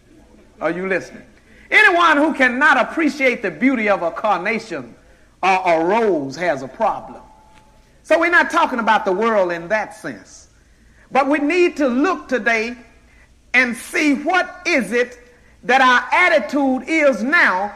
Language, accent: English, American